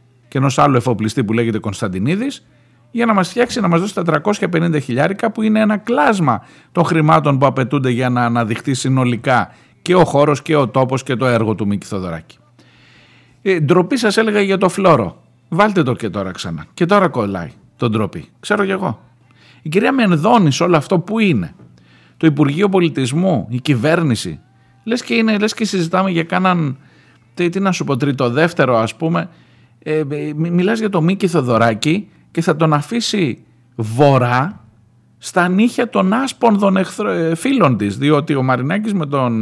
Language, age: Greek, 50-69